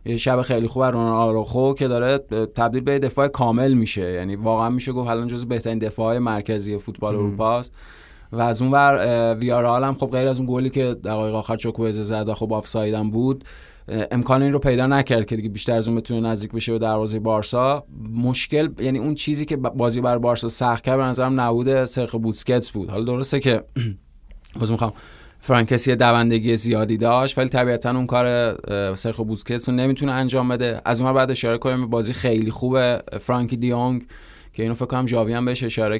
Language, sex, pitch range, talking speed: Persian, male, 110-125 Hz, 180 wpm